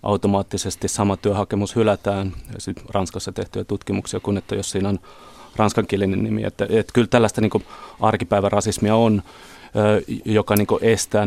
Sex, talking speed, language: male, 100 wpm, Finnish